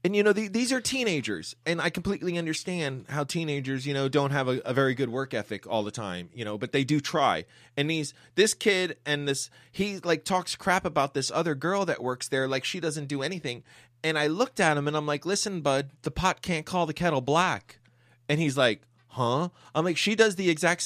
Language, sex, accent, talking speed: English, male, American, 230 wpm